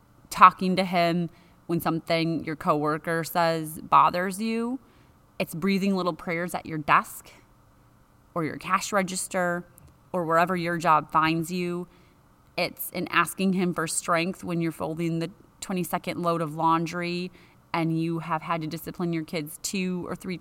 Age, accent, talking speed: 30-49, American, 155 wpm